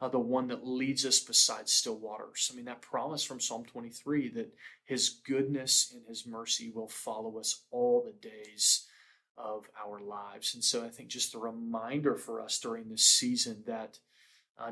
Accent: American